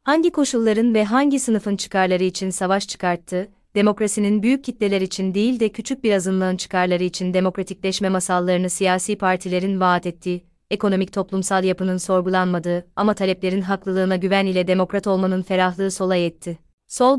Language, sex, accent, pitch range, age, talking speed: Turkish, female, native, 185-210 Hz, 30-49, 145 wpm